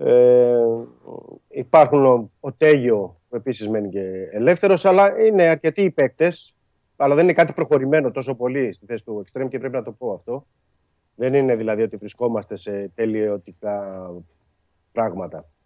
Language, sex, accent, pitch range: Greek, male, native, 105-140 Hz